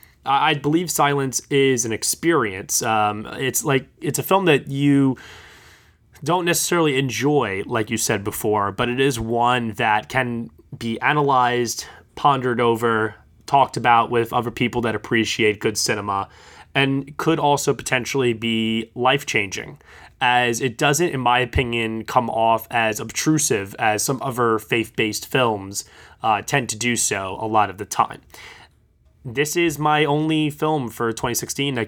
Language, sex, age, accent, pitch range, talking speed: English, male, 20-39, American, 110-140 Hz, 150 wpm